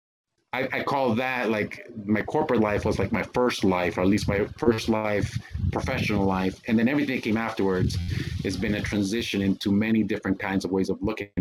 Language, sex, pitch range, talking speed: English, male, 95-110 Hz, 205 wpm